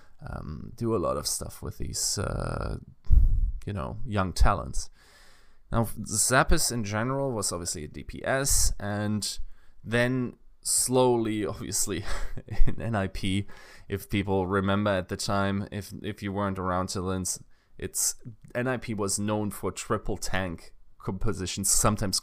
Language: English